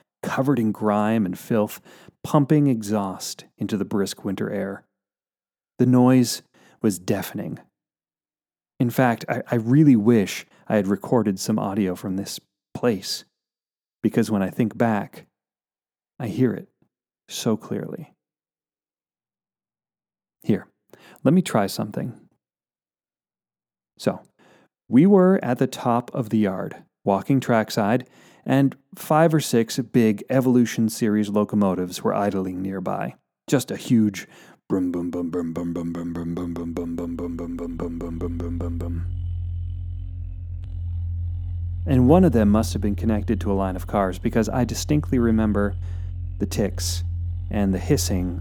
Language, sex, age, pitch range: English, male, 40-59, 85-110 Hz